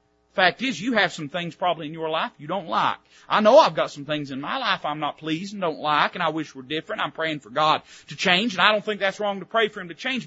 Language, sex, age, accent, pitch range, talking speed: English, male, 40-59, American, 135-225 Hz, 300 wpm